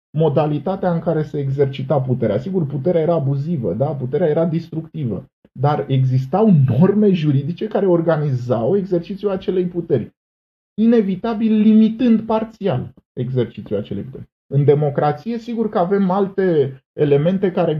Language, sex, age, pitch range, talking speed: Romanian, male, 20-39, 135-195 Hz, 120 wpm